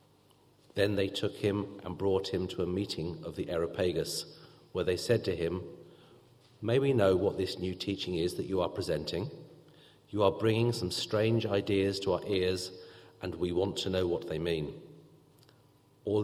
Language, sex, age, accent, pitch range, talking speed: English, male, 40-59, British, 85-105 Hz, 175 wpm